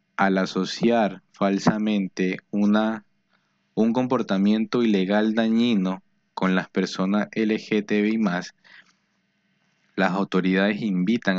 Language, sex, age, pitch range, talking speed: Spanish, male, 20-39, 90-105 Hz, 75 wpm